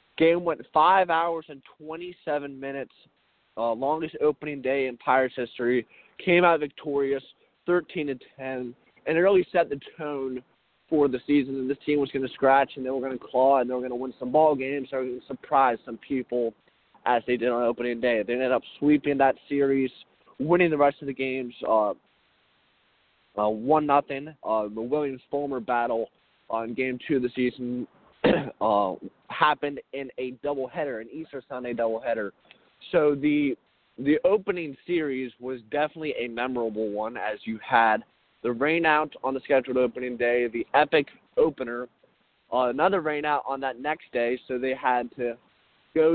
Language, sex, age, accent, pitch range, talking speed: English, male, 20-39, American, 125-150 Hz, 180 wpm